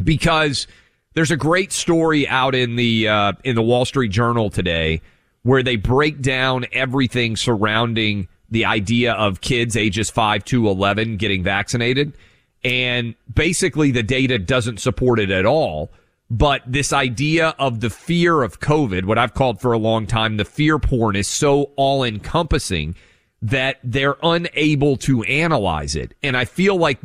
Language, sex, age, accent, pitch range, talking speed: English, male, 30-49, American, 110-150 Hz, 160 wpm